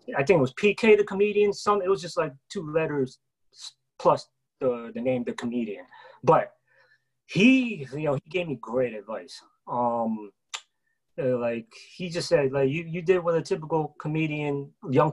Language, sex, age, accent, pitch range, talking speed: English, male, 30-49, American, 130-175 Hz, 170 wpm